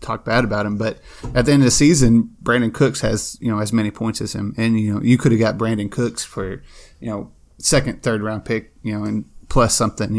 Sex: male